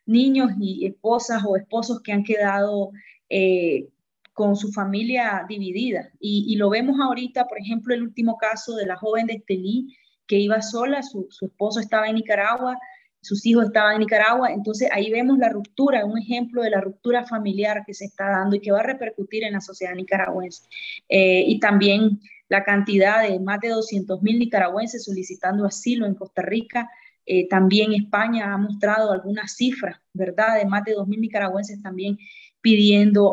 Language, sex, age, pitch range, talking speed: Spanish, female, 20-39, 200-235 Hz, 175 wpm